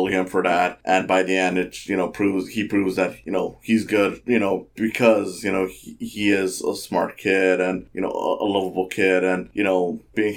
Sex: male